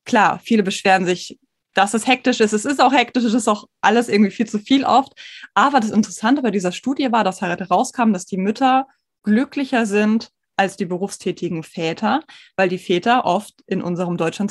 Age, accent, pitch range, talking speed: 20-39, German, 195-245 Hz, 190 wpm